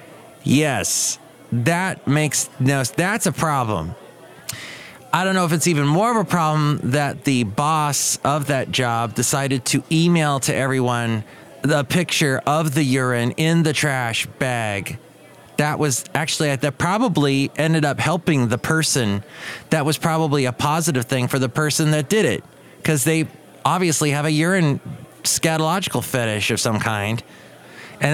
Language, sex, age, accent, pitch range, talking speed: English, male, 30-49, American, 115-160 Hz, 150 wpm